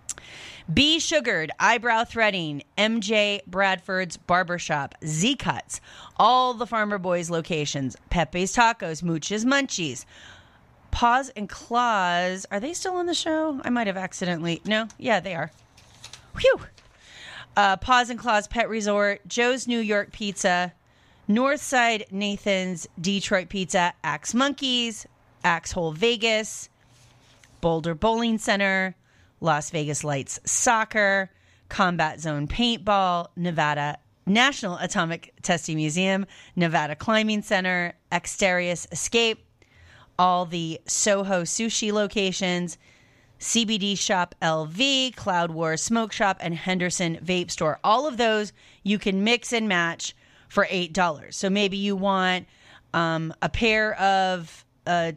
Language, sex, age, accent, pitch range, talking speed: English, female, 30-49, American, 165-220 Hz, 115 wpm